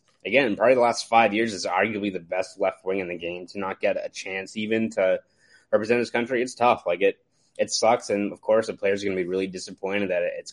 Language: English